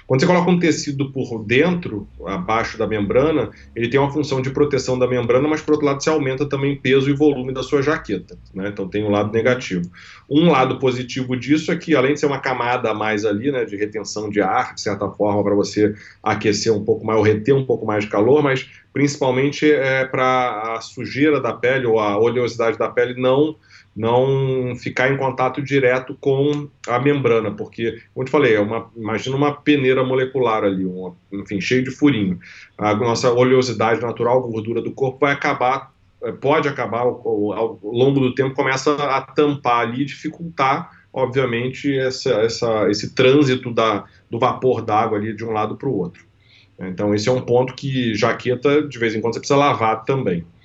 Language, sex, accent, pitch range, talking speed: Portuguese, male, Brazilian, 110-140 Hz, 195 wpm